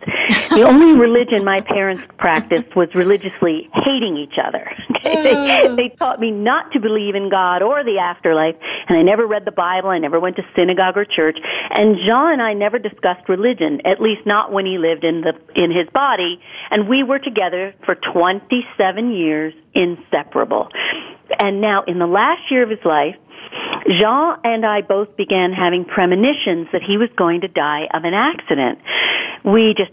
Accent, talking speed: American, 175 wpm